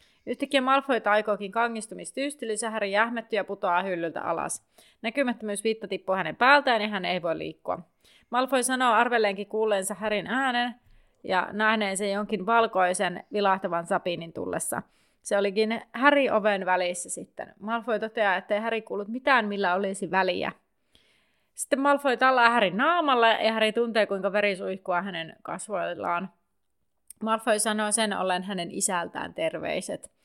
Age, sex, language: 30-49, female, Finnish